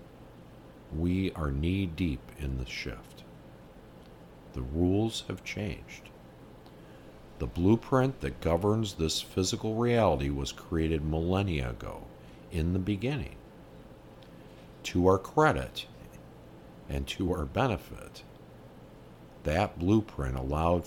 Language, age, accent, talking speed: English, 50-69, American, 100 wpm